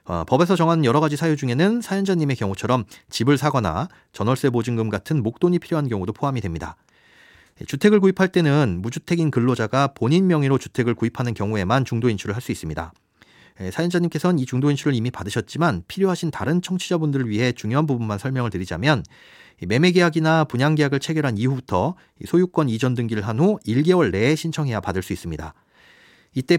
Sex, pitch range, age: male, 115-170 Hz, 40-59